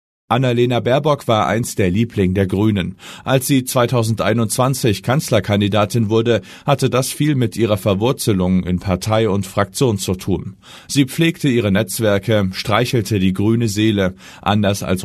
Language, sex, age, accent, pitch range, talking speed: German, male, 40-59, German, 95-125 Hz, 140 wpm